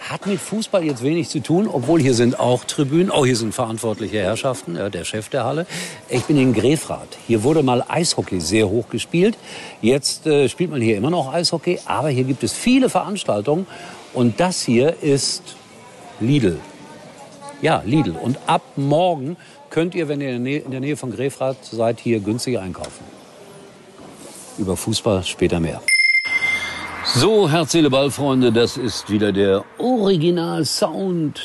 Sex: male